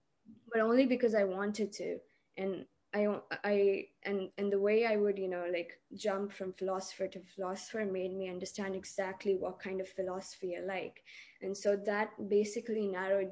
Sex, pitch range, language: female, 185-205 Hz, English